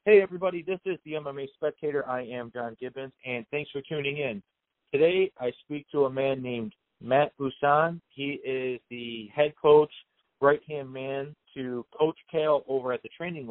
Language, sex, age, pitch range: English, male, 30-49, 125-145 Hz